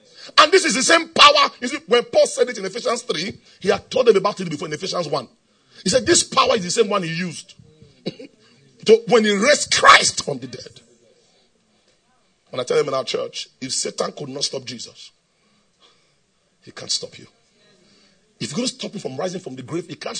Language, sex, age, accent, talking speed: English, male, 40-59, Nigerian, 215 wpm